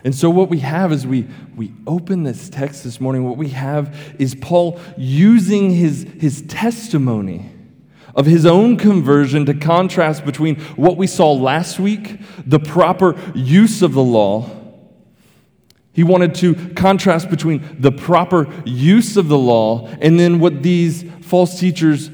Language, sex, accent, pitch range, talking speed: English, male, American, 135-175 Hz, 155 wpm